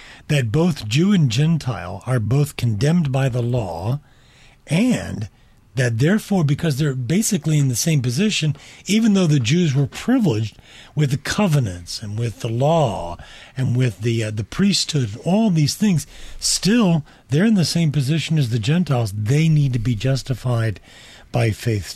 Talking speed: 160 wpm